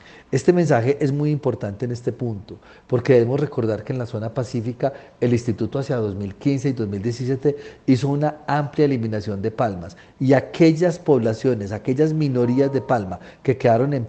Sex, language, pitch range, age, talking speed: male, Spanish, 110-135 Hz, 40-59, 160 wpm